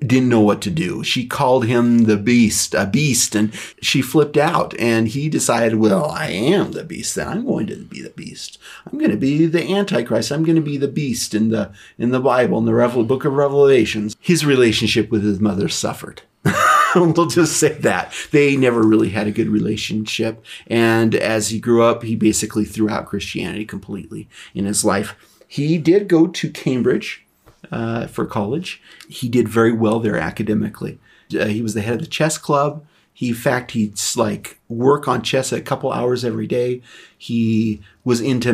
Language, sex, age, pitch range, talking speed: English, male, 40-59, 110-135 Hz, 195 wpm